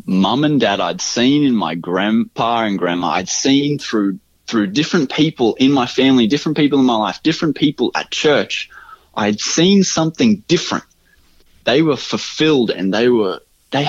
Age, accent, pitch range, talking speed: 20-39, Australian, 95-140 Hz, 175 wpm